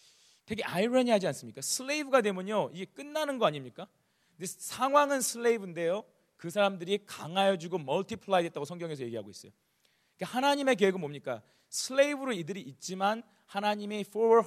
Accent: native